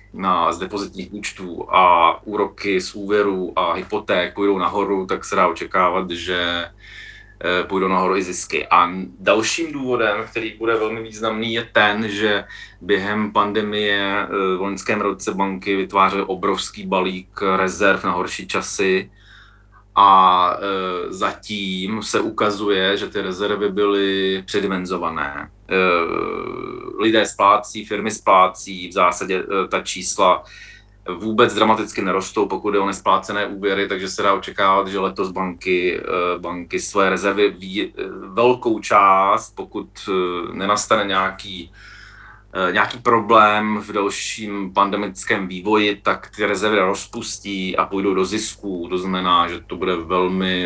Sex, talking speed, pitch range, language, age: male, 125 wpm, 95-105 Hz, Czech, 30-49